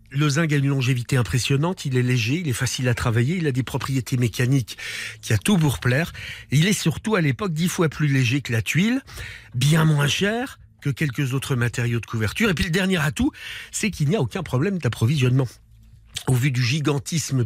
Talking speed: 210 wpm